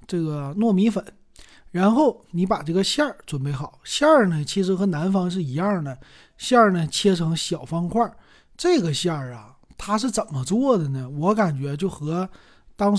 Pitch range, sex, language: 155-205 Hz, male, Chinese